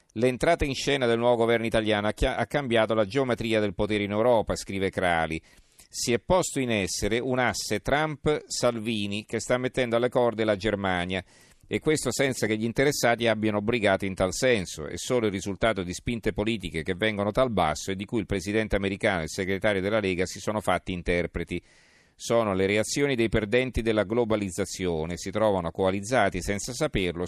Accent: native